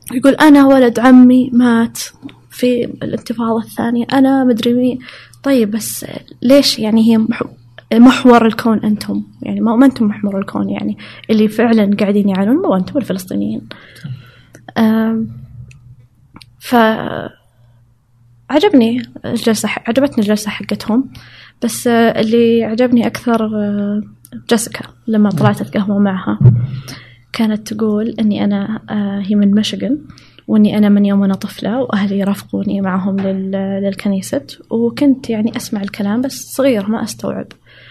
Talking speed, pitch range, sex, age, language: 115 wpm, 195-235 Hz, female, 20-39, Arabic